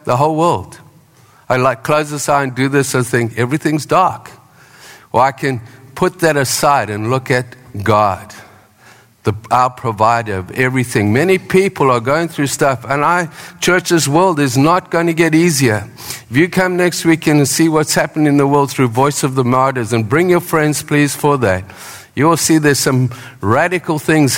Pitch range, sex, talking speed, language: 120-155 Hz, male, 185 wpm, English